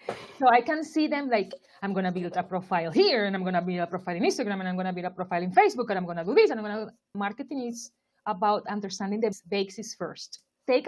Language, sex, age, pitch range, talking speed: English, female, 30-49, 200-275 Hz, 270 wpm